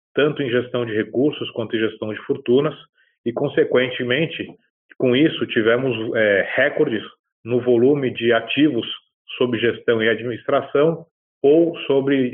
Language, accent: Portuguese, Brazilian